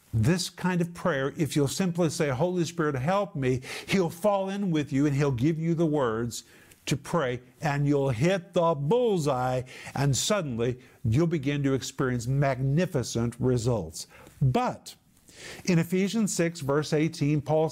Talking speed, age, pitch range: 150 wpm, 50-69, 155-175 Hz